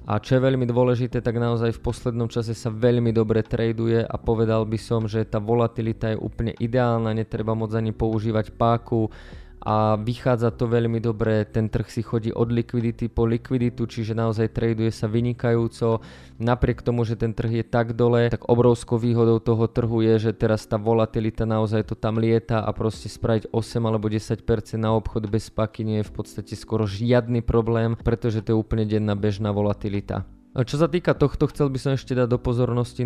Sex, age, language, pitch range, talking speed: male, 20-39, Slovak, 110-120 Hz, 190 wpm